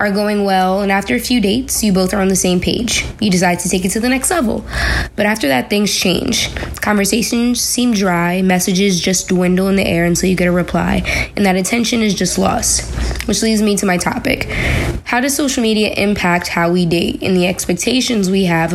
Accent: American